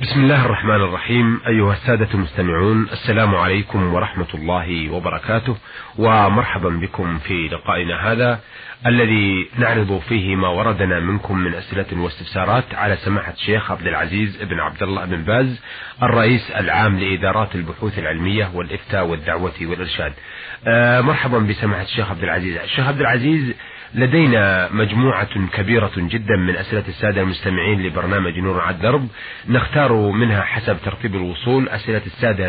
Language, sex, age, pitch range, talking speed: Arabic, male, 30-49, 95-115 Hz, 130 wpm